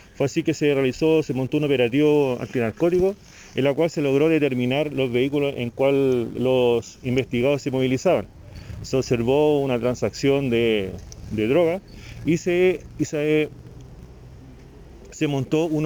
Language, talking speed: Spanish, 145 wpm